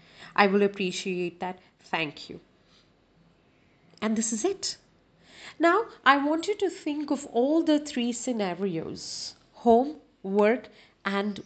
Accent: Indian